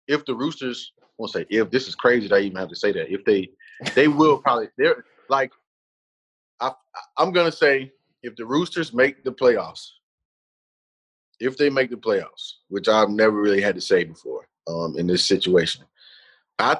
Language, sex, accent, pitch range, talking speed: English, male, American, 110-150 Hz, 180 wpm